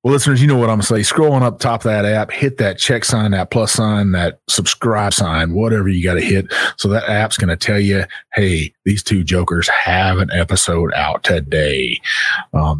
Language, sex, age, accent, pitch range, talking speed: English, male, 30-49, American, 90-110 Hz, 225 wpm